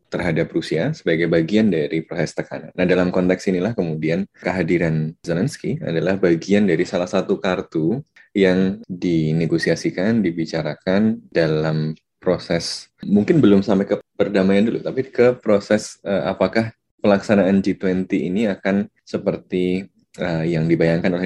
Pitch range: 80-95 Hz